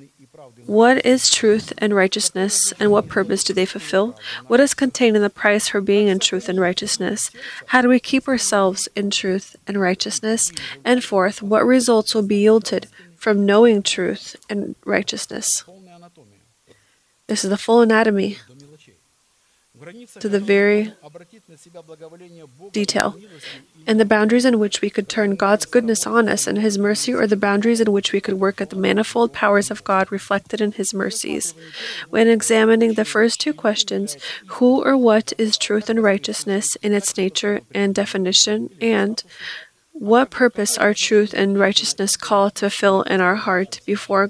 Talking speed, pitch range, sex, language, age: 160 wpm, 190-220 Hz, female, English, 20-39